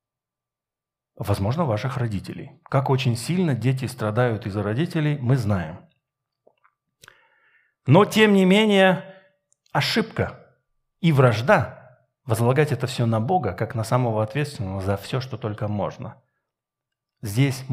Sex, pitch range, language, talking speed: male, 120-150 Hz, Russian, 115 wpm